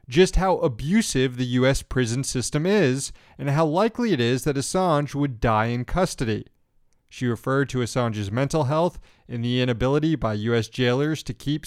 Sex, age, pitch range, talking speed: male, 30-49, 120-150 Hz, 170 wpm